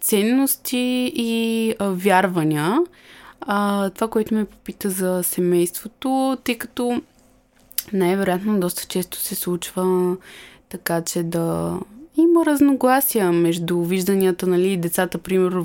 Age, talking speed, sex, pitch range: 20-39, 110 wpm, female, 175-235 Hz